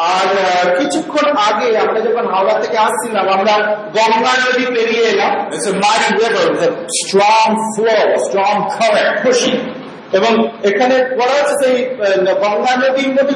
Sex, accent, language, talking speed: male, native, Bengali, 95 wpm